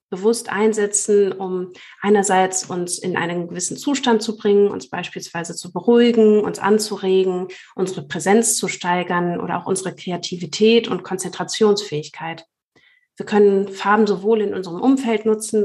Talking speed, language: 135 wpm, German